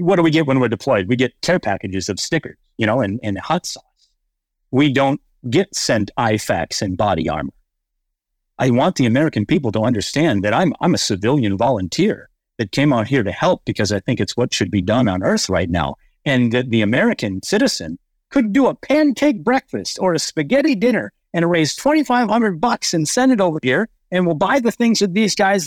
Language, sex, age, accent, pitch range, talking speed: English, male, 50-69, American, 150-215 Hz, 210 wpm